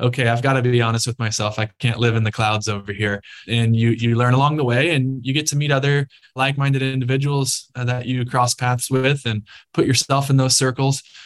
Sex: male